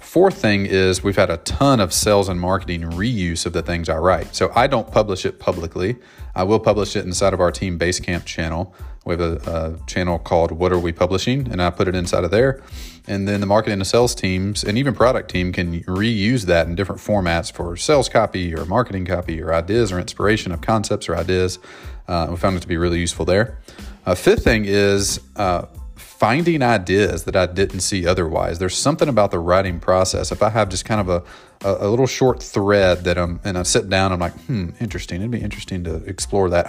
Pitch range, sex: 85-105 Hz, male